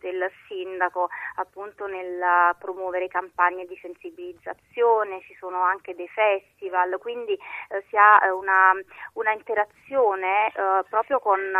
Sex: female